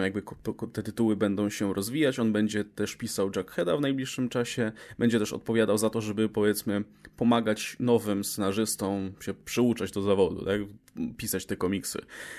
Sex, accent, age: male, native, 20-39